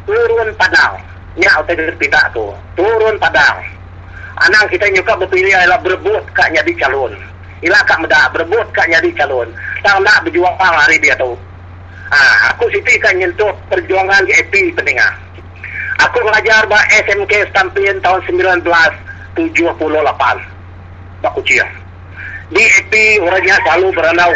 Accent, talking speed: Indonesian, 130 wpm